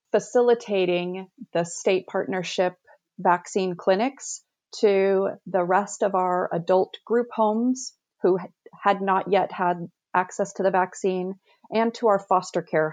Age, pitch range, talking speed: 30-49, 165-195 Hz, 130 wpm